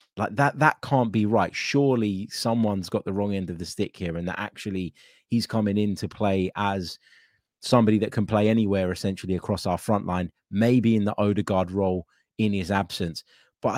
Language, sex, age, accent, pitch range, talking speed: English, male, 20-39, British, 95-115 Hz, 190 wpm